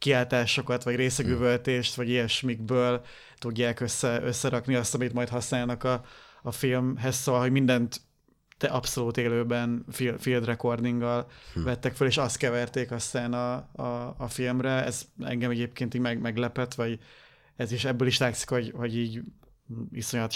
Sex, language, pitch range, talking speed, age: male, Hungarian, 120-130 Hz, 145 wpm, 30-49